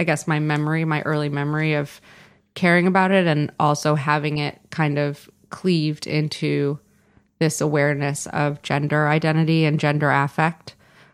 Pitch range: 150-170 Hz